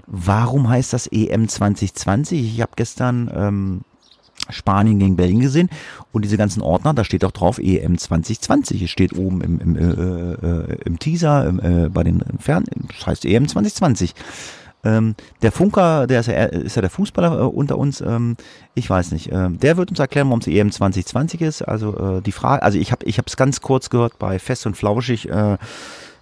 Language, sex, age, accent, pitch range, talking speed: German, male, 30-49, German, 90-125 Hz, 195 wpm